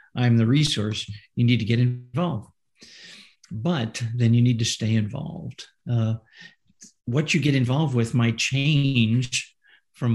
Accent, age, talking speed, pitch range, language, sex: American, 50-69, 140 wpm, 115-145 Hz, English, male